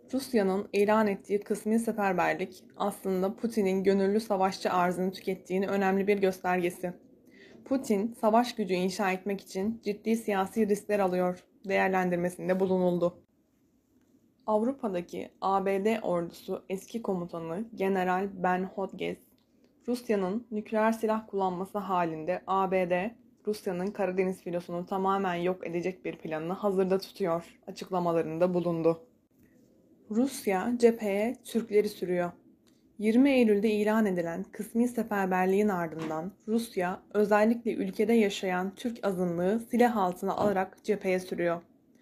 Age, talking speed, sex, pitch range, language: 20-39, 105 wpm, female, 185-220 Hz, Turkish